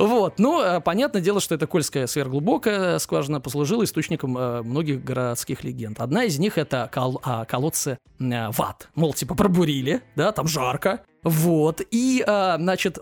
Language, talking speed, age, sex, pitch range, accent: Russian, 135 wpm, 20-39, male, 140-200 Hz, native